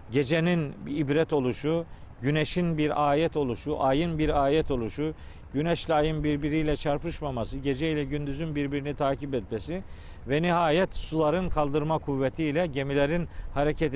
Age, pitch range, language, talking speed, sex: 50-69, 140-210 Hz, Turkish, 120 wpm, male